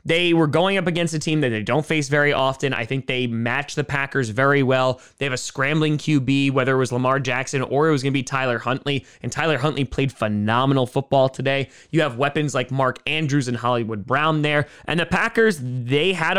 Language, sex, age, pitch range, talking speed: English, male, 20-39, 135-160 Hz, 225 wpm